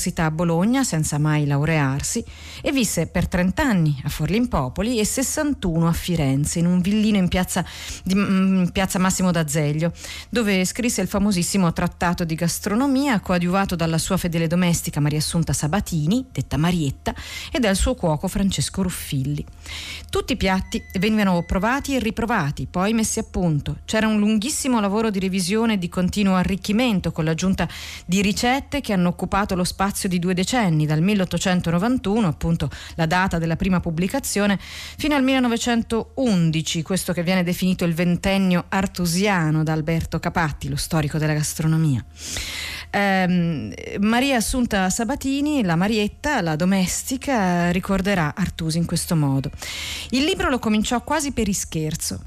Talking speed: 145 wpm